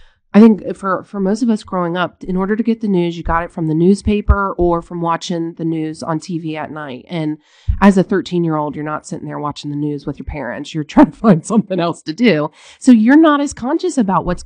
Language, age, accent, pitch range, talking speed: English, 30-49, American, 165-215 Hz, 255 wpm